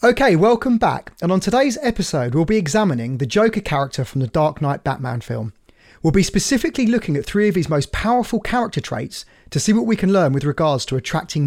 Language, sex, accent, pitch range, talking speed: English, male, British, 140-190 Hz, 215 wpm